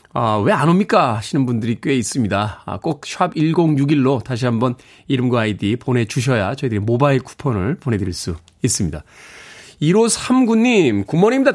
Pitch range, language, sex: 120-175 Hz, Korean, male